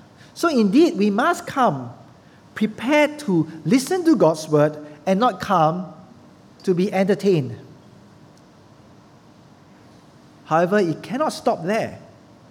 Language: English